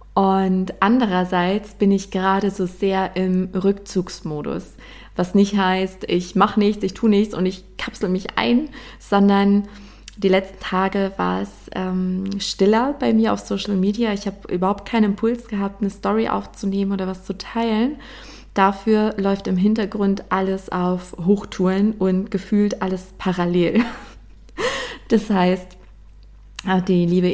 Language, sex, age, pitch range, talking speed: German, female, 20-39, 185-205 Hz, 140 wpm